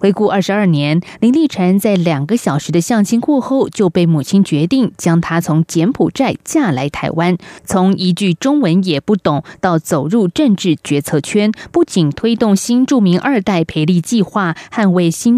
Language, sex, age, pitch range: Chinese, female, 20-39, 160-220 Hz